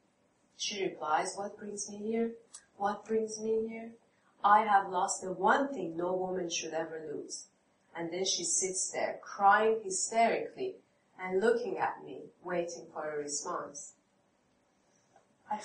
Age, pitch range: 30-49, 170-225 Hz